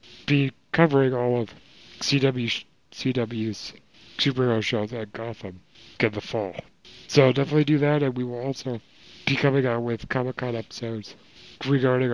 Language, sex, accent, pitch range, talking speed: English, male, American, 115-135 Hz, 135 wpm